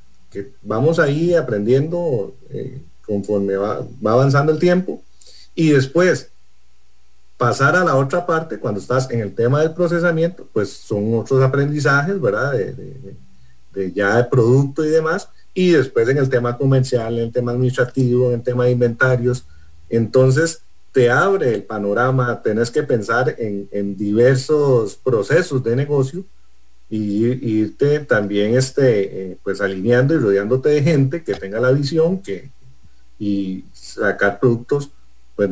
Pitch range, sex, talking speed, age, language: 100-140 Hz, male, 145 wpm, 40-59, English